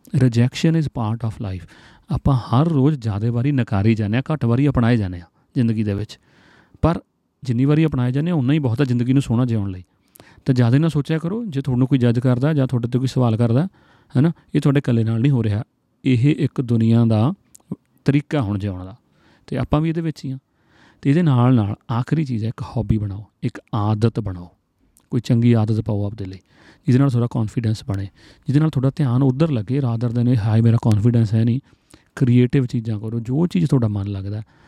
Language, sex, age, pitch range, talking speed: Punjabi, male, 40-59, 110-135 Hz, 185 wpm